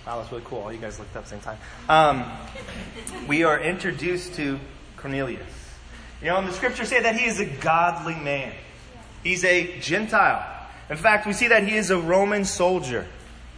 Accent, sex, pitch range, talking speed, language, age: American, male, 130-220 Hz, 195 wpm, English, 30-49